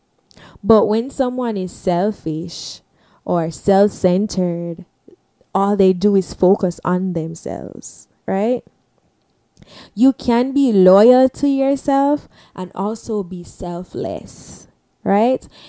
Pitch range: 175-210 Hz